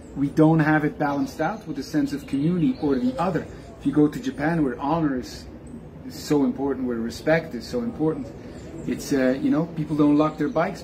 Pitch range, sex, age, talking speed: 125-160 Hz, male, 30-49, 210 wpm